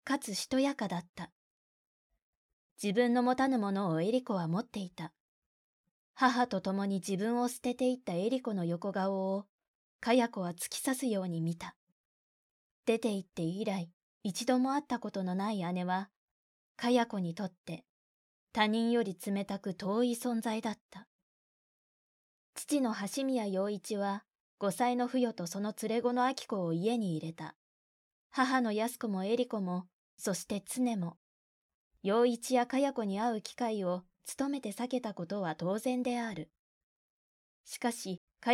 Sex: female